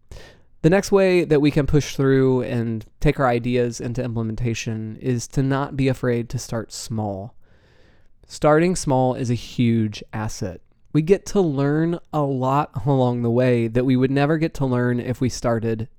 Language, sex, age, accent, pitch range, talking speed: English, male, 20-39, American, 115-150 Hz, 175 wpm